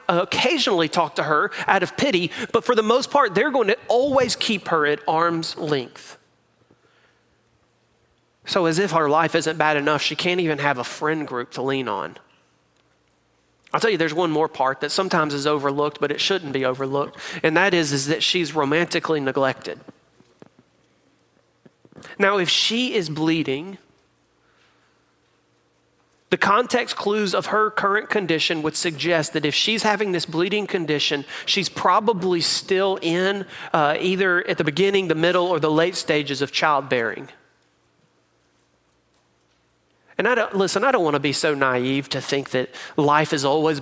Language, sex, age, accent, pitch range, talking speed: English, male, 40-59, American, 140-185 Hz, 160 wpm